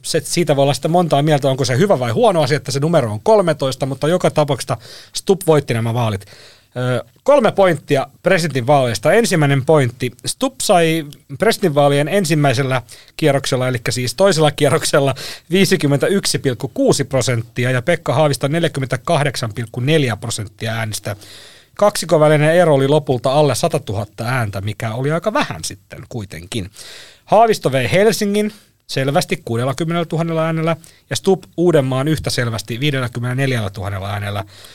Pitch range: 120-165 Hz